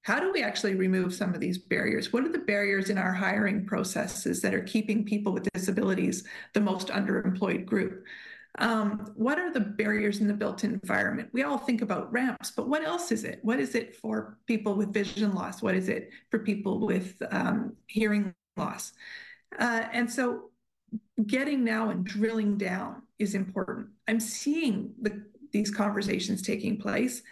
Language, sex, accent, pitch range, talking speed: English, female, American, 200-230 Hz, 175 wpm